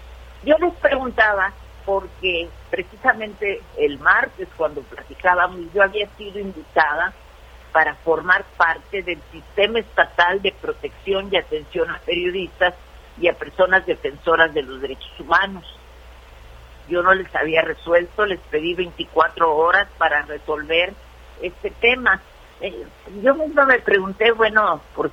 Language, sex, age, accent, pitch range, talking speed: Spanish, female, 50-69, Mexican, 160-210 Hz, 125 wpm